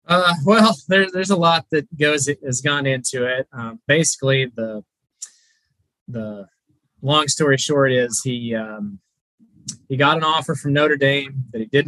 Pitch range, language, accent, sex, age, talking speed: 120-145 Hz, English, American, male, 20-39, 160 wpm